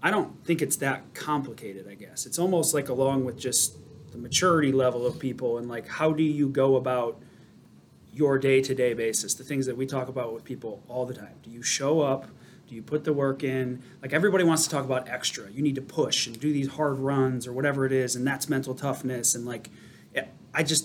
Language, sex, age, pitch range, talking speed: English, male, 30-49, 125-150 Hz, 225 wpm